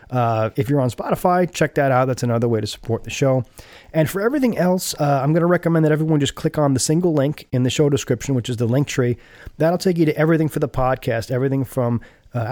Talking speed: 250 wpm